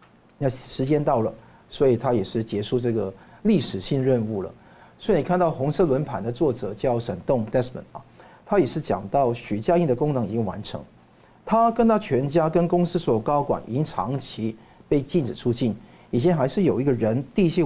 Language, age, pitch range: Chinese, 50-69, 120-170 Hz